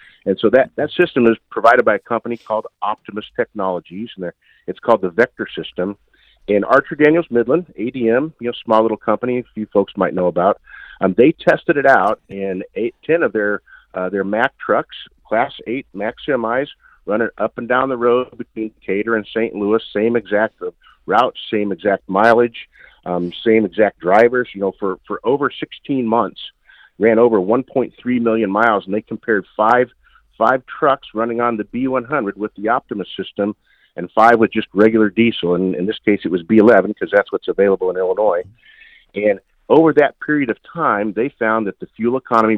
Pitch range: 105-125 Hz